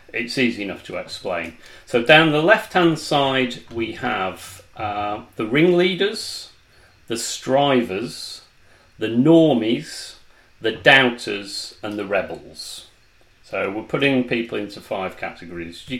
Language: English